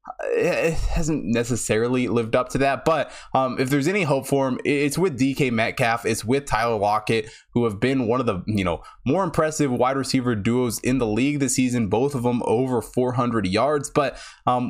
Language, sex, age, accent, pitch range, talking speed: English, male, 20-39, American, 115-145 Hz, 200 wpm